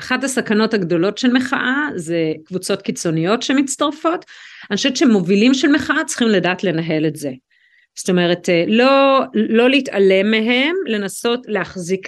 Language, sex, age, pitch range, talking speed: Hebrew, female, 40-59, 205-290 Hz, 135 wpm